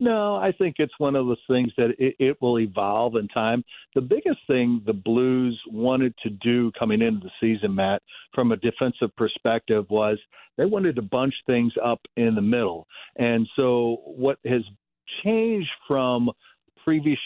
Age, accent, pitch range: 60-79, American, 115-135 Hz